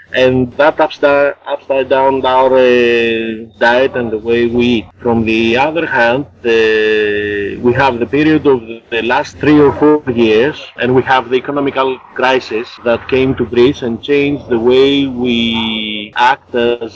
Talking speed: 160 wpm